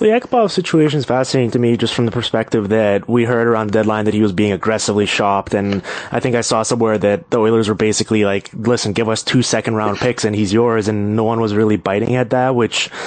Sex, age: male, 20-39